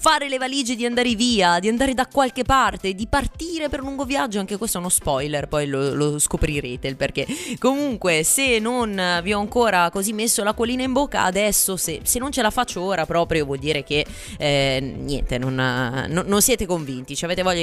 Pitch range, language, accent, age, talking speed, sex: 150-235 Hz, Italian, native, 20-39, 215 wpm, female